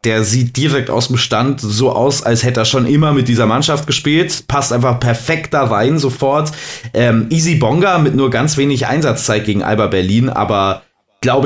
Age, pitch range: 30-49, 120-145 Hz